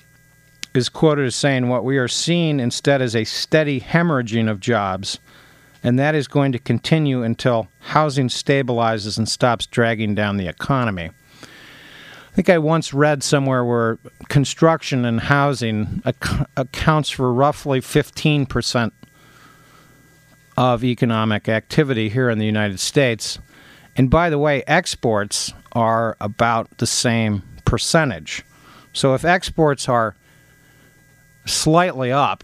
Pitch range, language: 110-140 Hz, English